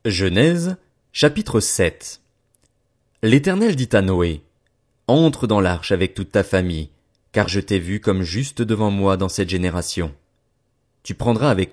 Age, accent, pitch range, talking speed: 30-49, French, 95-120 Hz, 145 wpm